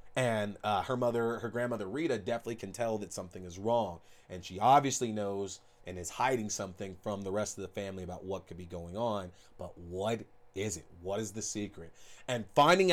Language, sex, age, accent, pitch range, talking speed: English, male, 30-49, American, 105-130 Hz, 205 wpm